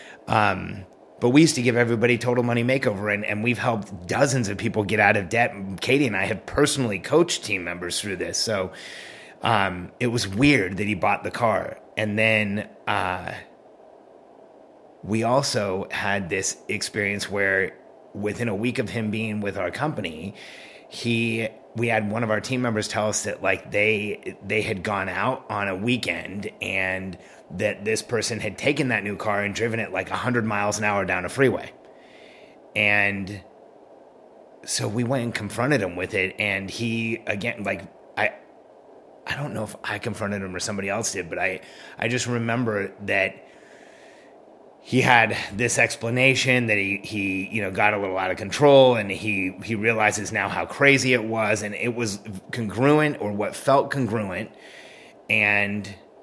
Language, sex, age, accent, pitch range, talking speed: English, male, 30-49, American, 100-120 Hz, 175 wpm